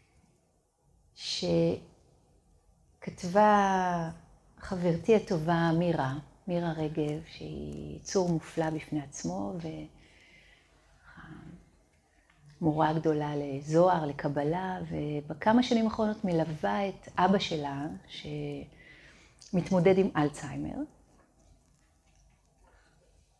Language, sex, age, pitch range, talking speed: Hebrew, female, 40-59, 150-185 Hz, 65 wpm